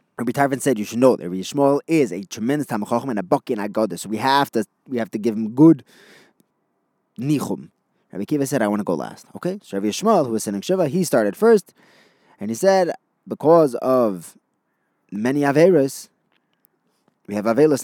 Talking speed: 200 wpm